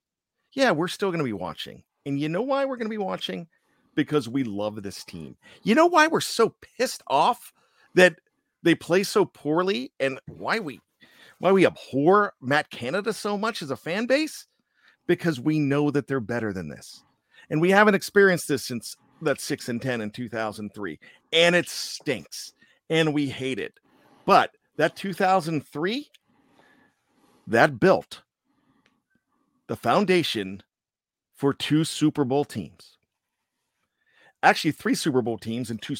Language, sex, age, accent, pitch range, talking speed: English, male, 50-69, American, 145-225 Hz, 155 wpm